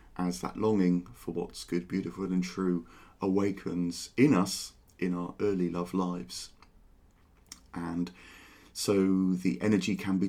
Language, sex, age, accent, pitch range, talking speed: English, male, 40-59, British, 90-105 Hz, 135 wpm